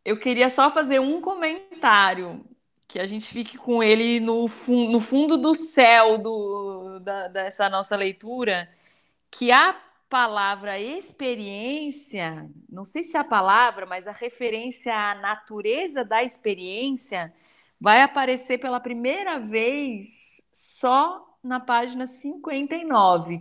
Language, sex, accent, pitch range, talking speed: Portuguese, female, Brazilian, 210-265 Hz, 125 wpm